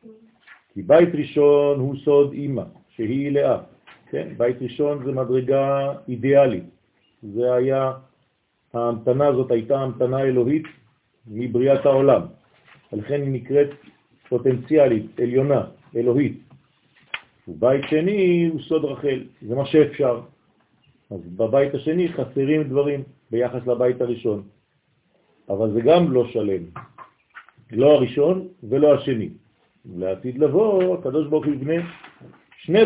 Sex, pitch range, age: male, 120-150 Hz, 50-69